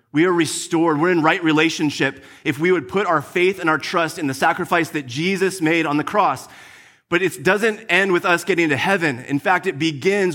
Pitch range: 150-185 Hz